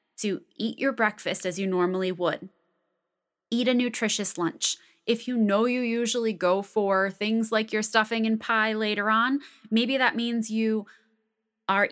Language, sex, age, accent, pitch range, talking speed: English, female, 20-39, American, 185-240 Hz, 160 wpm